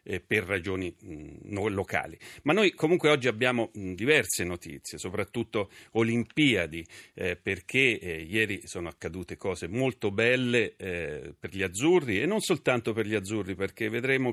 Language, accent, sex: Italian, native, male